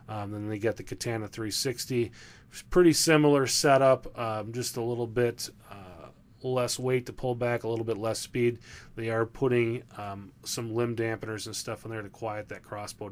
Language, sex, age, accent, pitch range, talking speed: English, male, 30-49, American, 105-125 Hz, 190 wpm